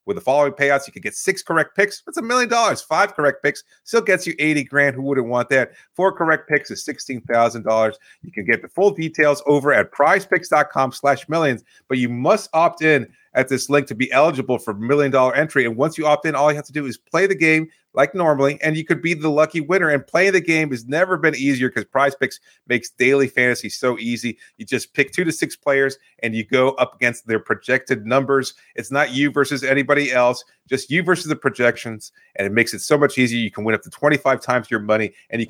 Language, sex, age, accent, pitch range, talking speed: English, male, 30-49, American, 130-160 Hz, 235 wpm